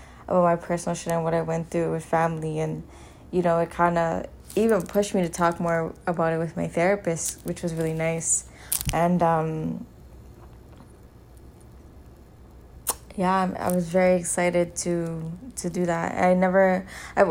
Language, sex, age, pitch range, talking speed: English, female, 20-39, 170-190 Hz, 160 wpm